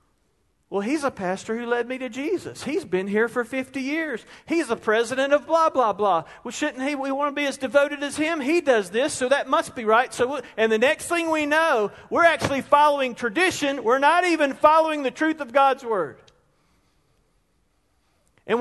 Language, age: English, 40-59